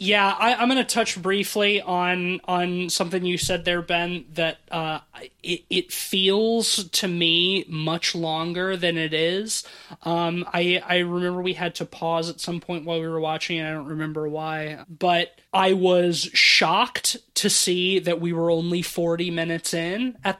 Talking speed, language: 175 wpm, English